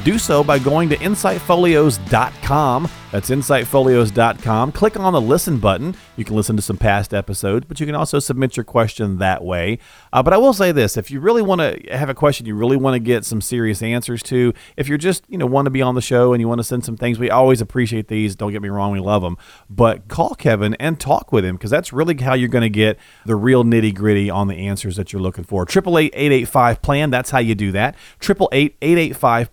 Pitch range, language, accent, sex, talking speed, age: 110-145 Hz, English, American, male, 235 wpm, 40-59